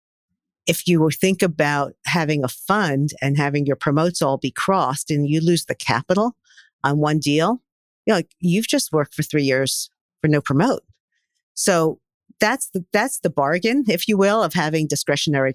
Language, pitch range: English, 140-185 Hz